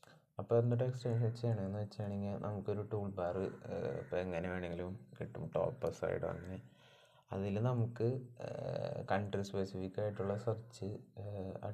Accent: native